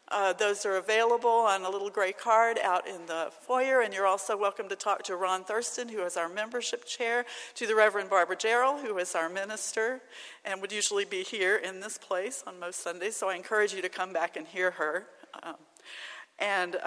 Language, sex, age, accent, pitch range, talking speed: English, female, 40-59, American, 185-235 Hz, 210 wpm